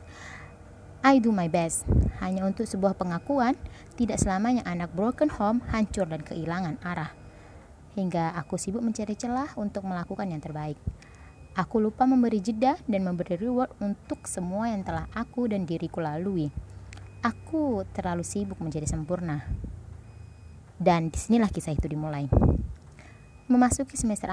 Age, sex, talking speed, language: 20-39, female, 130 wpm, Indonesian